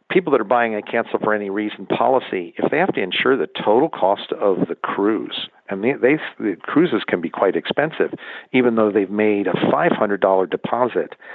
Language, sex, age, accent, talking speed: English, male, 50-69, American, 195 wpm